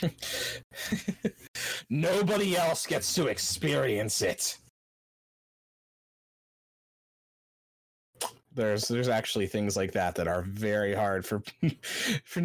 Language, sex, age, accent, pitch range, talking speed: English, male, 30-49, American, 100-135 Hz, 85 wpm